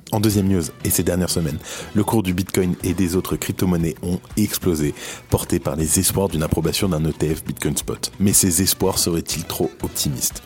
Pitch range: 85-100 Hz